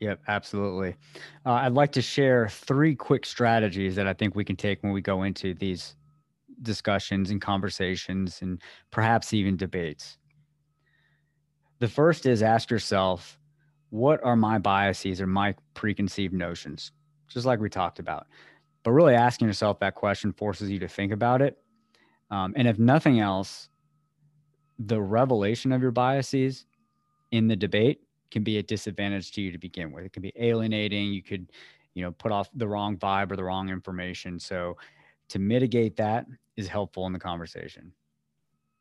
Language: English